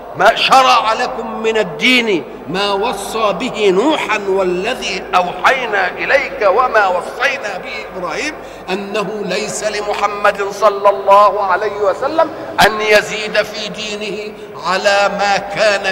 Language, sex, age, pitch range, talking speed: Arabic, male, 50-69, 200-255 Hz, 115 wpm